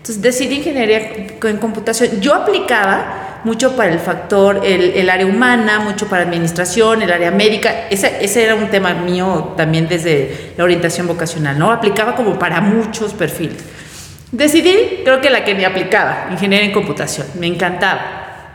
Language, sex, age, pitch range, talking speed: Spanish, female, 40-59, 170-225 Hz, 160 wpm